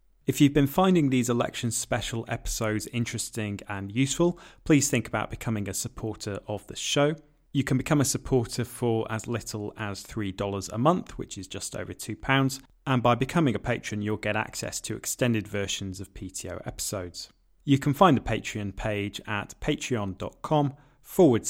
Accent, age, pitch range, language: British, 30-49, 105-130 Hz, English